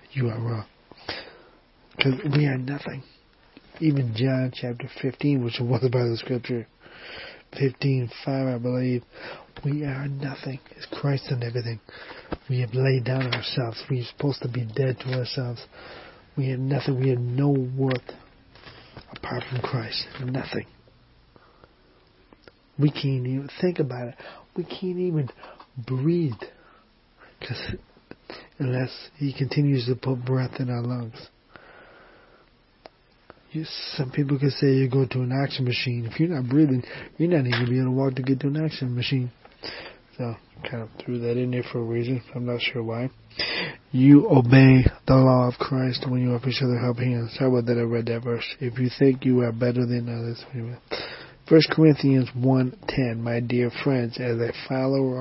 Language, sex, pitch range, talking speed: English, male, 120-135 Hz, 165 wpm